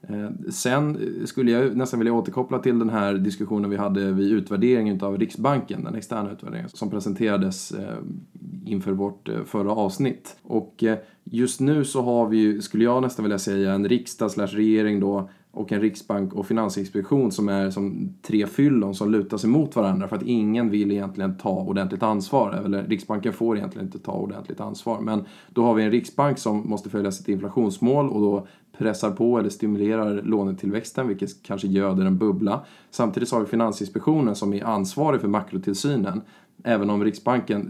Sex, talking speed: male, 170 wpm